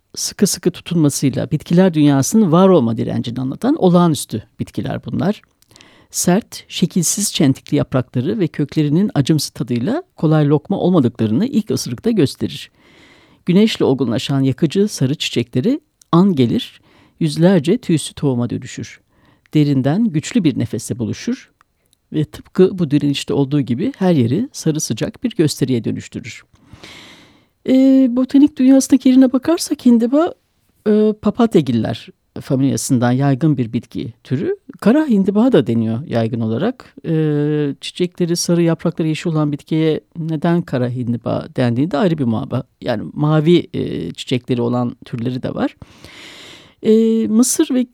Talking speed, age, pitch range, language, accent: 125 wpm, 60-79, 135-205 Hz, Turkish, native